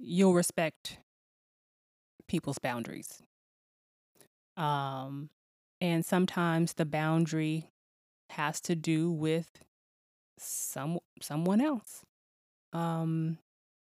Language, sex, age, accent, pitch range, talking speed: English, female, 20-39, American, 155-180 Hz, 75 wpm